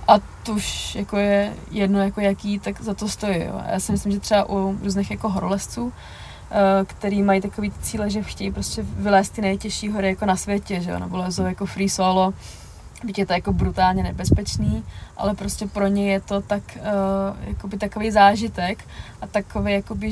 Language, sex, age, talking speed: Czech, female, 20-39, 180 wpm